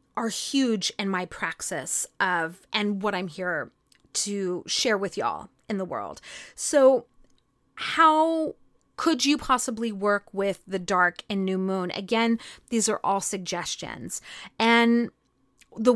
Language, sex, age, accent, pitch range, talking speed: English, female, 30-49, American, 195-260 Hz, 135 wpm